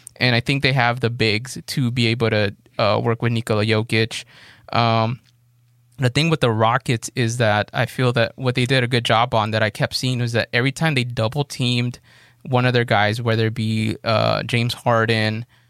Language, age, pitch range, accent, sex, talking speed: English, 20-39, 115-130 Hz, American, male, 210 wpm